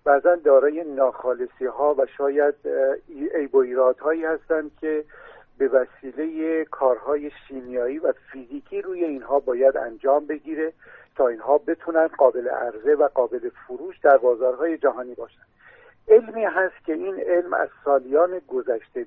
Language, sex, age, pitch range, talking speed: Persian, male, 50-69, 135-185 Hz, 130 wpm